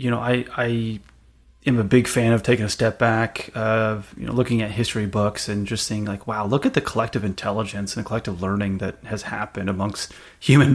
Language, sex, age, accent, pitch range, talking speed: English, male, 30-49, American, 110-140 Hz, 220 wpm